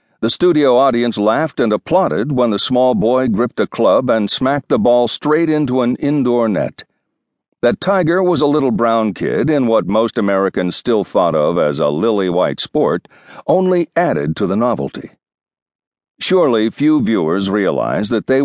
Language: English